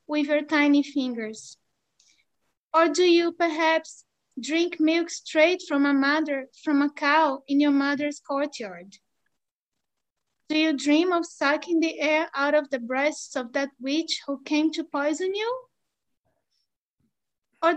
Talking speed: 140 wpm